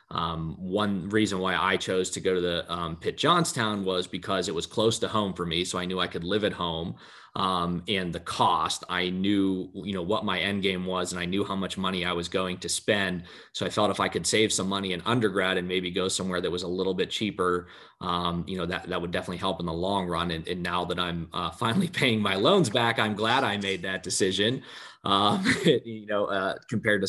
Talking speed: 245 wpm